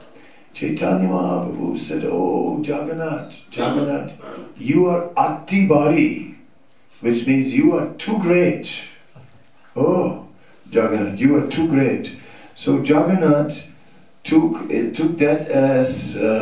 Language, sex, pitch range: English, male, 115-170 Hz